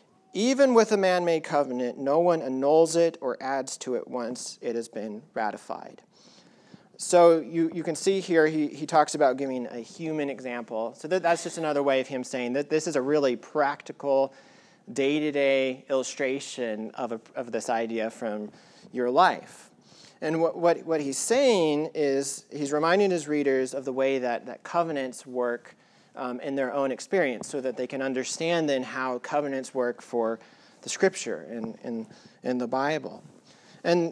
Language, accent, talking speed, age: English, American, 175 wpm, 40-59